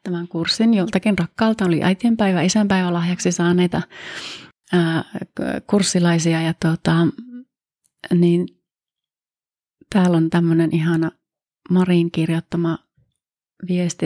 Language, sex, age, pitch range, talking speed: Finnish, female, 30-49, 165-185 Hz, 75 wpm